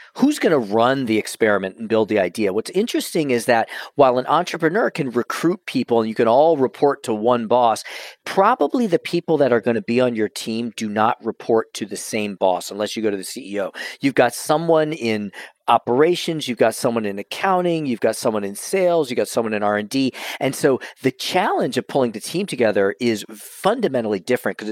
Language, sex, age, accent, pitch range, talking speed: English, male, 40-59, American, 105-150 Hz, 200 wpm